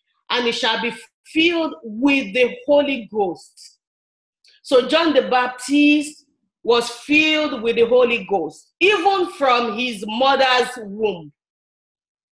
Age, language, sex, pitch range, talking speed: 40-59, English, female, 235-300 Hz, 115 wpm